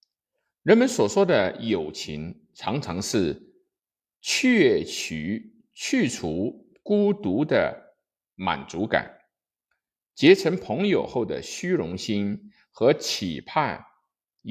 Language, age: Chinese, 50-69